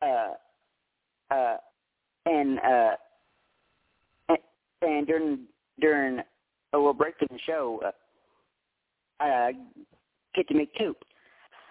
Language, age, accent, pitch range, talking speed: English, 50-69, American, 135-185 Hz, 110 wpm